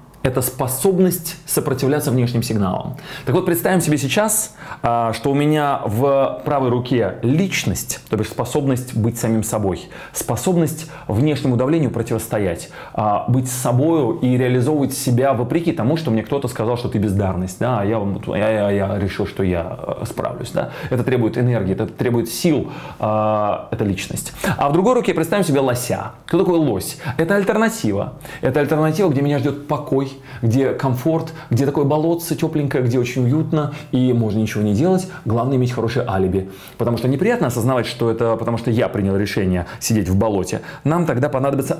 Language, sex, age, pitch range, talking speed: Russian, male, 20-39, 110-150 Hz, 160 wpm